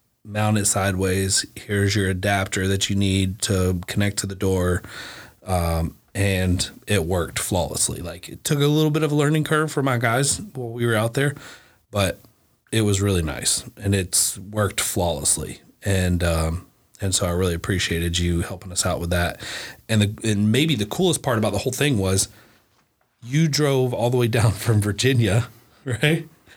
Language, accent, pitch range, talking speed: English, American, 95-125 Hz, 180 wpm